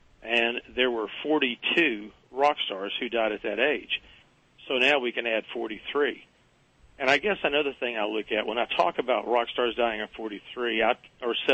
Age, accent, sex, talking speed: 40-59, American, male, 175 wpm